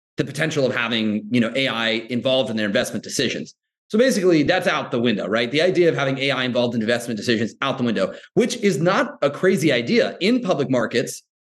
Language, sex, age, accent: English, male, 30-49, American